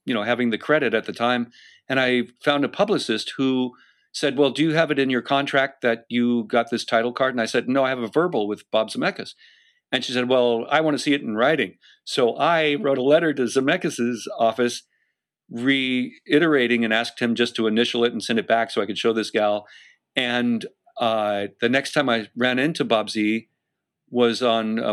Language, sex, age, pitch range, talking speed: English, male, 50-69, 110-135 Hz, 215 wpm